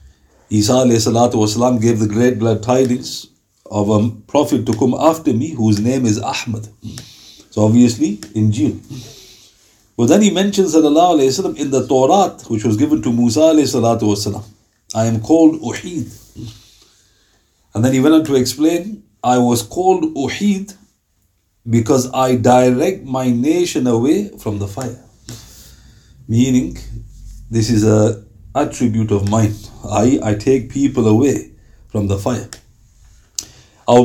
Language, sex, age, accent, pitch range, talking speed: English, male, 50-69, Indian, 110-135 Hz, 135 wpm